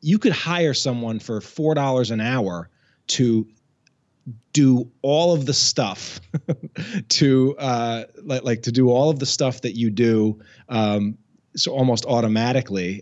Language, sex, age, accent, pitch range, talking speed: English, male, 30-49, American, 110-135 Hz, 150 wpm